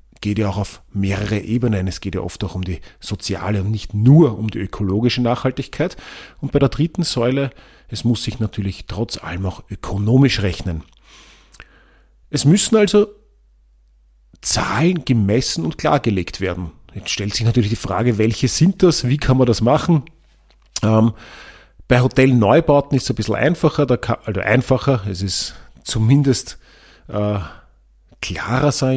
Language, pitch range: German, 105-140 Hz